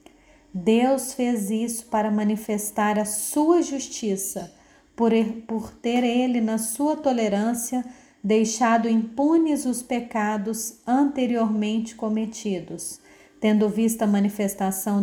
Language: Portuguese